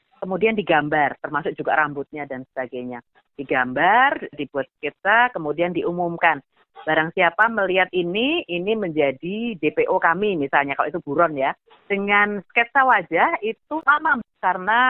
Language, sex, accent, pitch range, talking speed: Indonesian, female, native, 150-205 Hz, 125 wpm